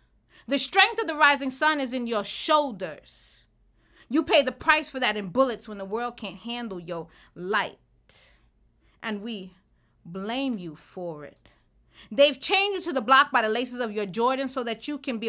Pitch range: 215-275 Hz